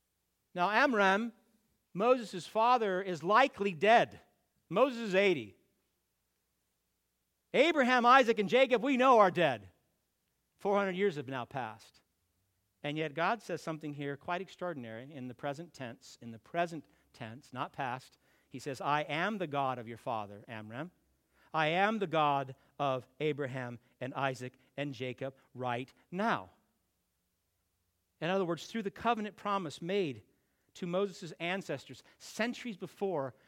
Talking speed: 135 wpm